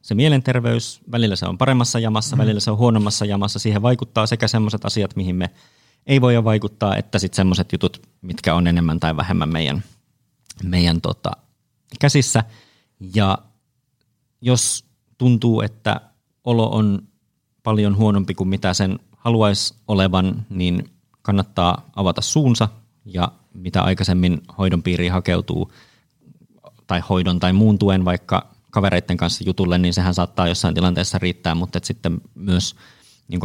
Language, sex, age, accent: Finnish, male, 30-49, native